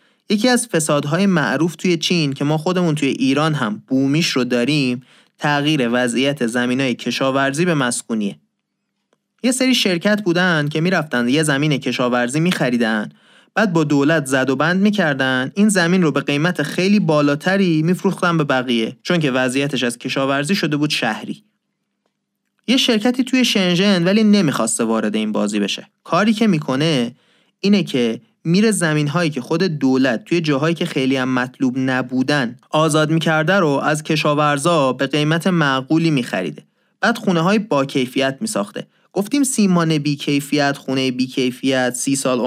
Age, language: 30-49, Persian